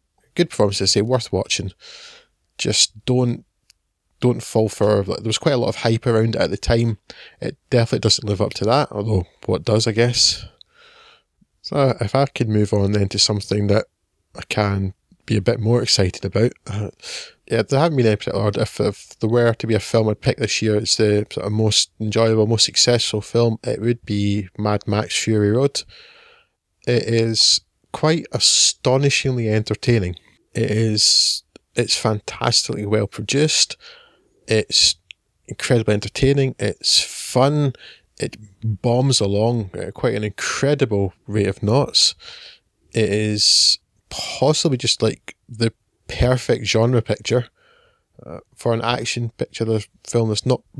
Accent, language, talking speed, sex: British, English, 155 wpm, male